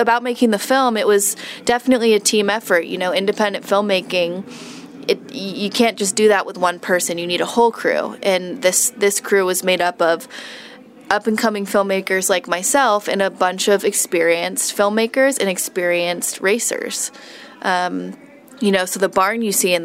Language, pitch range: English, 185-235 Hz